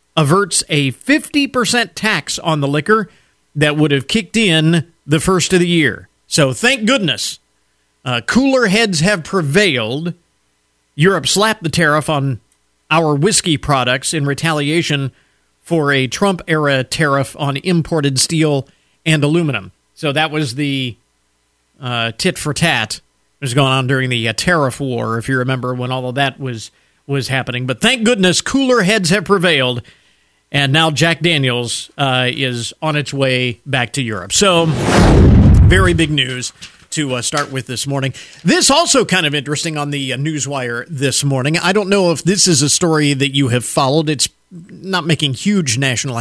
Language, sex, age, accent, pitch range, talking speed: English, male, 40-59, American, 130-175 Hz, 170 wpm